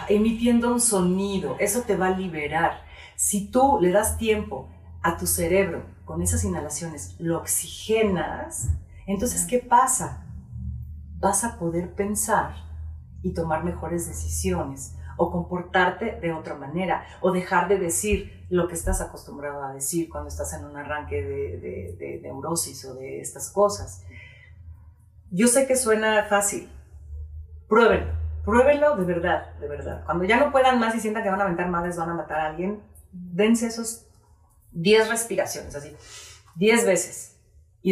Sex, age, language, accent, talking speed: female, 40-59, Spanish, Mexican, 150 wpm